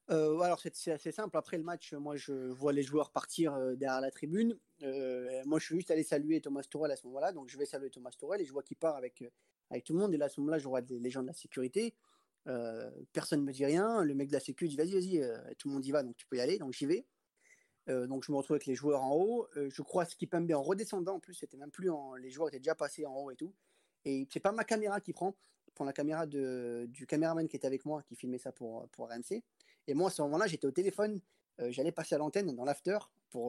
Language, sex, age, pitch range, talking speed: French, male, 30-49, 130-160 Hz, 285 wpm